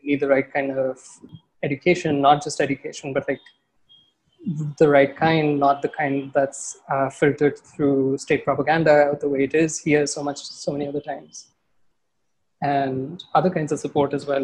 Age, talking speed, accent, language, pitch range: 20-39, 170 wpm, Indian, English, 140-155 Hz